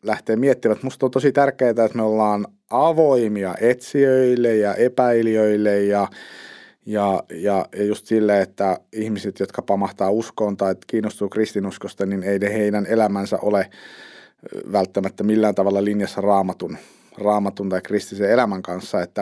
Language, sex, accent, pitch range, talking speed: Finnish, male, native, 105-130 Hz, 140 wpm